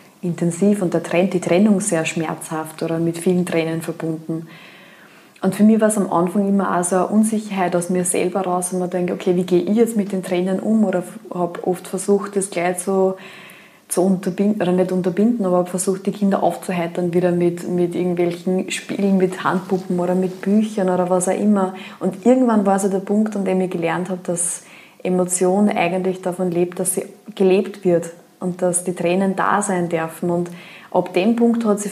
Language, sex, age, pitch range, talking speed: German, female, 20-39, 175-195 Hz, 195 wpm